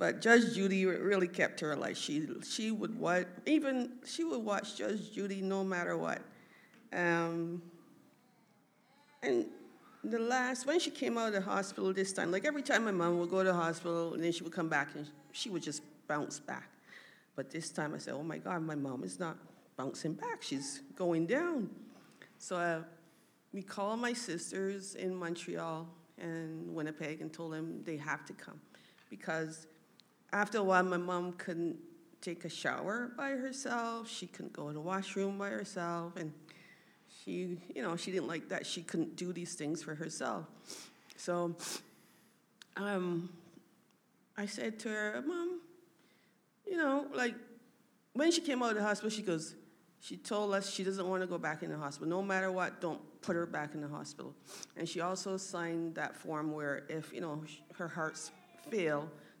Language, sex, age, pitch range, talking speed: English, female, 50-69, 165-220 Hz, 180 wpm